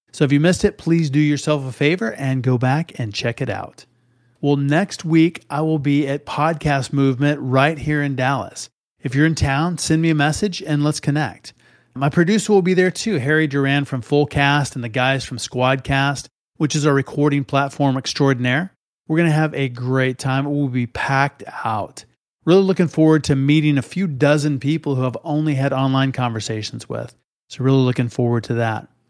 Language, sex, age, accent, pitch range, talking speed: English, male, 30-49, American, 130-155 Hz, 200 wpm